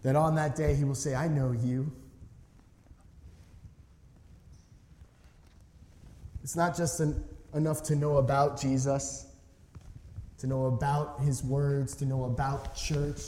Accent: American